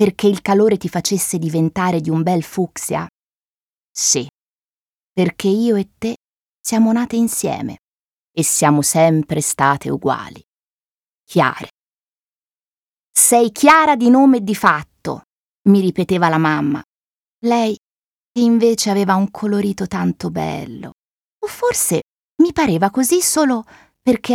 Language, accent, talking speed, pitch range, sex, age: Italian, native, 125 wpm, 180-250 Hz, female, 20-39